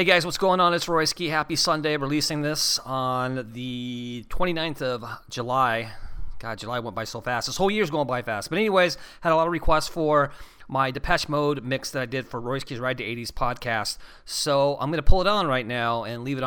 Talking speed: 220 wpm